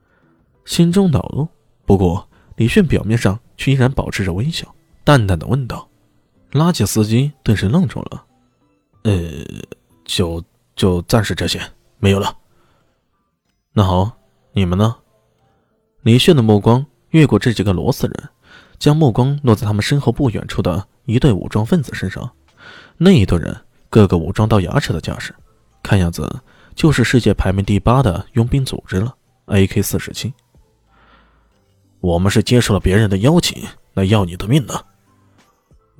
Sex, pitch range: male, 95-130 Hz